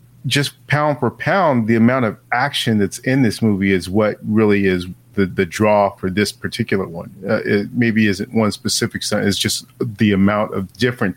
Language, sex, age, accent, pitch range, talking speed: English, male, 40-59, American, 105-135 Hz, 195 wpm